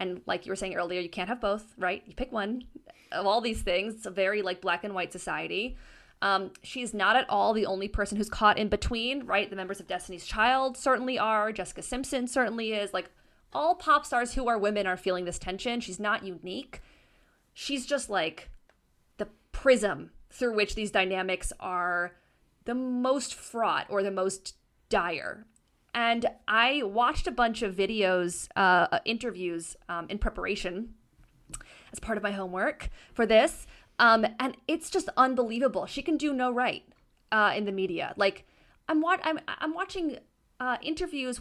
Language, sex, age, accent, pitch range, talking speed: English, female, 20-39, American, 195-265 Hz, 175 wpm